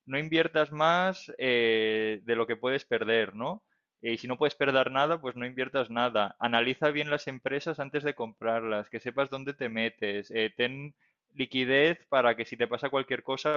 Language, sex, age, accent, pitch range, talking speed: Spanish, male, 20-39, Spanish, 115-145 Hz, 185 wpm